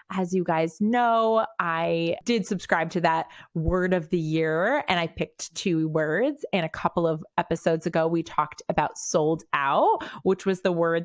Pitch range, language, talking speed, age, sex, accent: 165-215 Hz, English, 180 wpm, 30-49, female, American